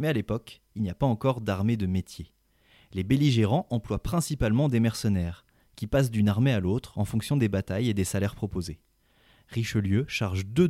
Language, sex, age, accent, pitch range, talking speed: French, male, 20-39, French, 100-135 Hz, 190 wpm